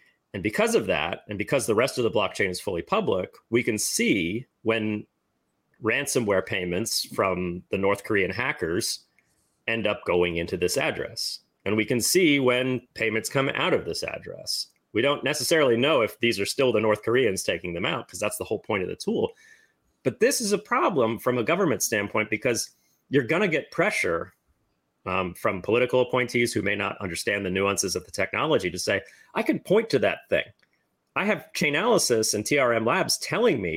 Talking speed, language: 195 wpm, English